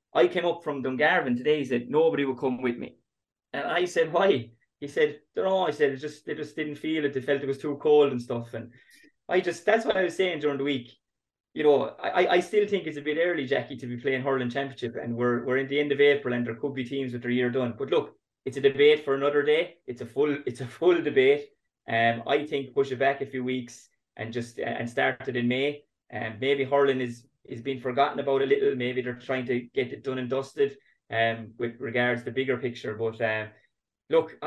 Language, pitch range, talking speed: English, 120-145 Hz, 250 wpm